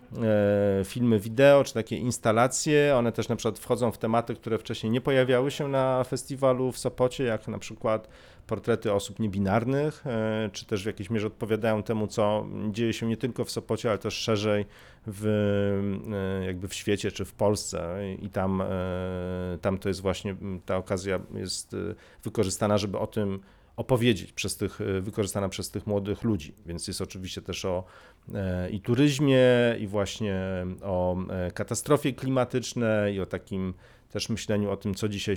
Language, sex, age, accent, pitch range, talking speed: Polish, male, 40-59, native, 95-115 Hz, 155 wpm